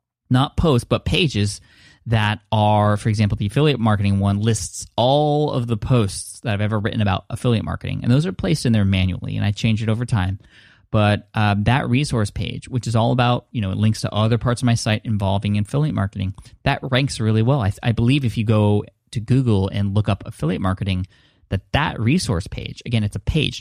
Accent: American